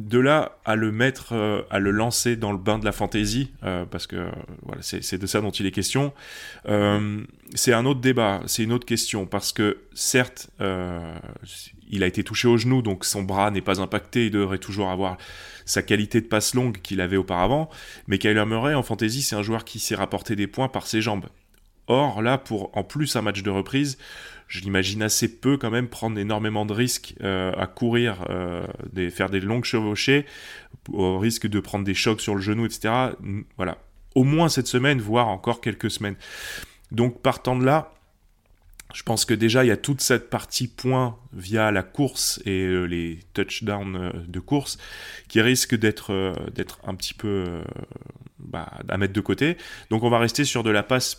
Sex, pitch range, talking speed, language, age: male, 95-120 Hz, 205 wpm, French, 20-39